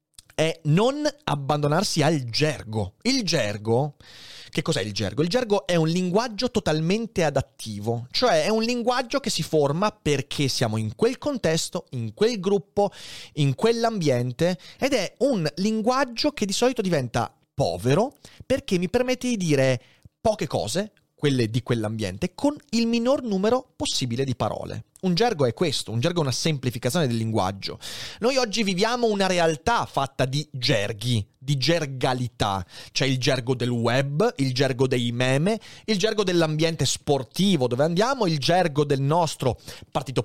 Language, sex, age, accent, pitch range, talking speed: Italian, male, 30-49, native, 125-205 Hz, 150 wpm